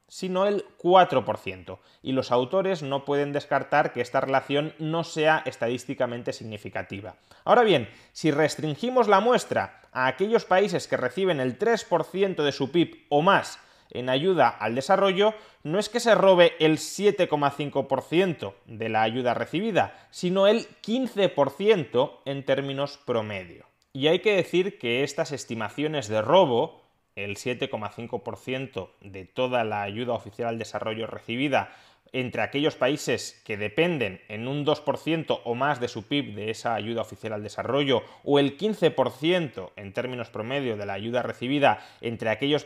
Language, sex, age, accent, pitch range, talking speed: Spanish, male, 20-39, Spanish, 115-160 Hz, 150 wpm